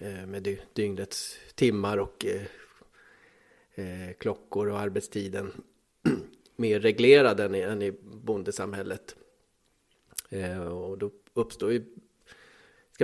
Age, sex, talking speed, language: 30-49, male, 85 wpm, Swedish